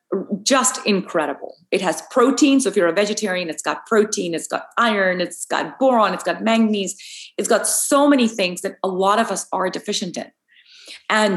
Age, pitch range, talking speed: 30-49, 175-235 Hz, 190 wpm